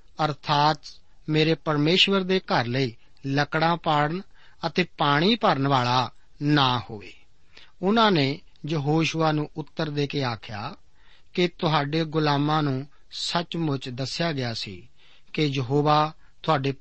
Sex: male